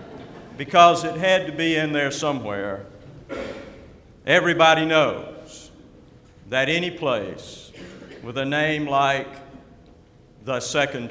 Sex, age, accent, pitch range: male, 60-79, American, 130-165 Hz